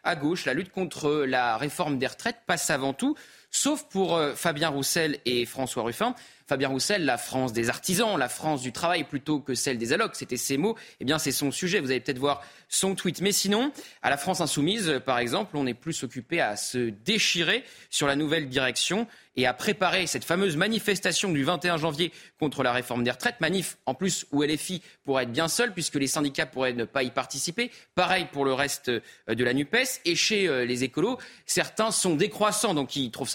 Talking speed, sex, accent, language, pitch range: 205 wpm, male, French, French, 135-185 Hz